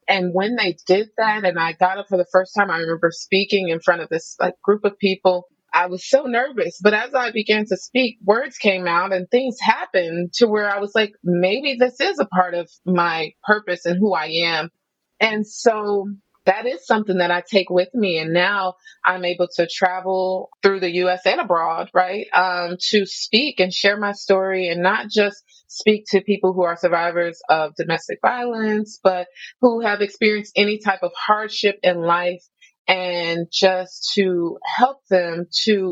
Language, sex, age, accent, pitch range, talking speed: English, female, 30-49, American, 175-205 Hz, 190 wpm